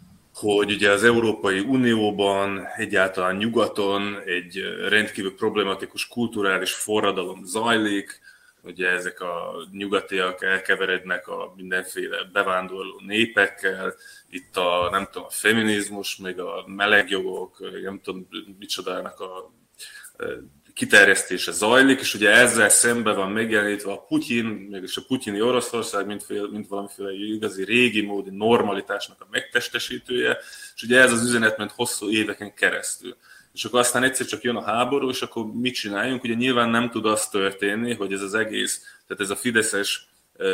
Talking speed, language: 140 wpm, Hungarian